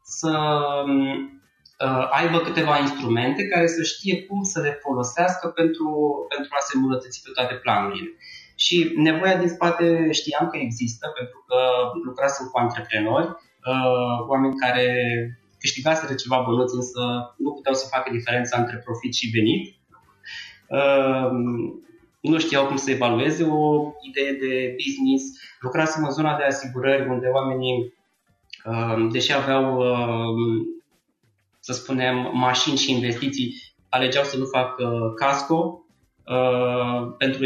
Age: 20-39